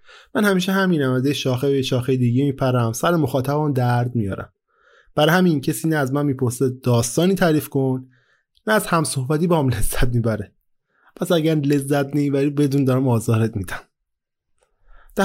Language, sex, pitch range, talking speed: Persian, male, 125-170 Hz, 155 wpm